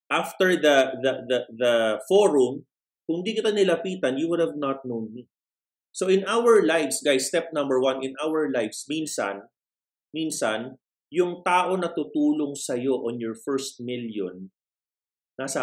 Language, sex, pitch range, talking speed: Filipino, male, 125-170 Hz, 145 wpm